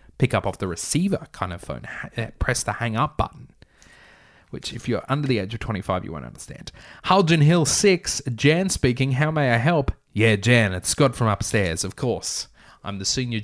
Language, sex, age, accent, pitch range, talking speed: English, male, 20-39, Australian, 100-135 Hz, 200 wpm